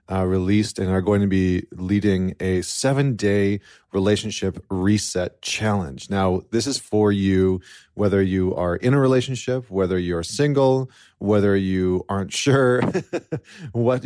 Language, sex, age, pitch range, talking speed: English, male, 30-49, 90-110 Hz, 135 wpm